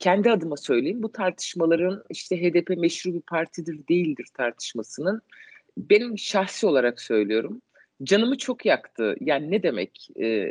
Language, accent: Turkish, native